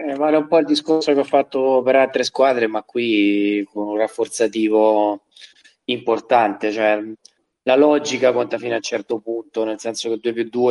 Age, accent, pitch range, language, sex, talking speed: 20-39, native, 105-115 Hz, Italian, male, 175 wpm